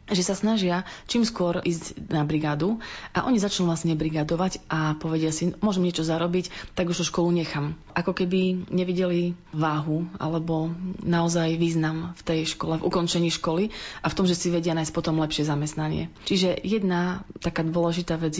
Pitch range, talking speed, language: 160-180 Hz, 165 wpm, Slovak